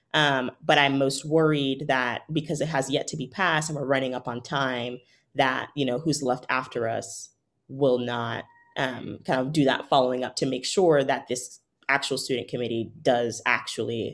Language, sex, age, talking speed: English, female, 20-39, 190 wpm